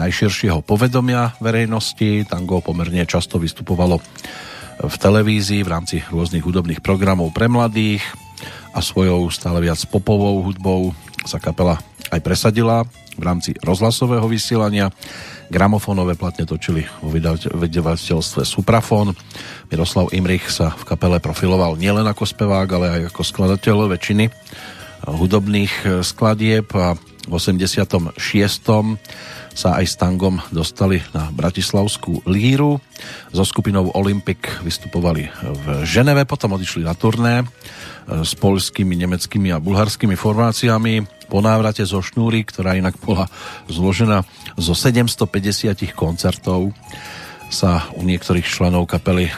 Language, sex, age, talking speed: Slovak, male, 50-69, 115 wpm